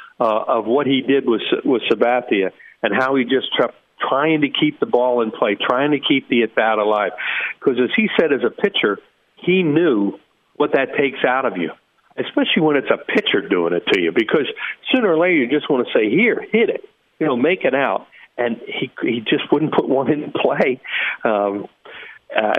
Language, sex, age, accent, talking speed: English, male, 50-69, American, 205 wpm